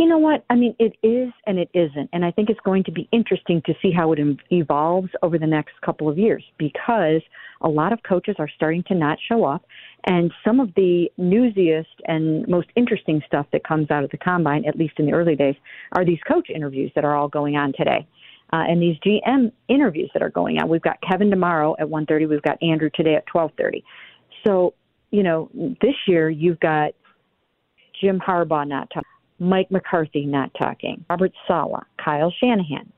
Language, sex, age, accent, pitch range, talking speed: English, female, 50-69, American, 160-205 Hz, 205 wpm